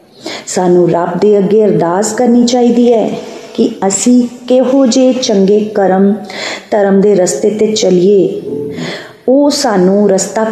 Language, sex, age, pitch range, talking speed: Punjabi, female, 30-49, 180-225 Hz, 125 wpm